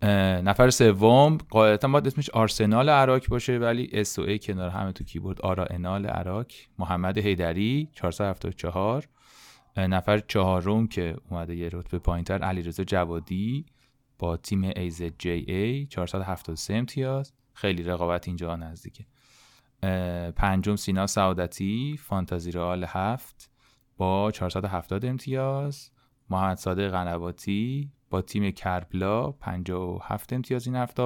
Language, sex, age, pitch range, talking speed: Persian, male, 30-49, 90-125 Hz, 110 wpm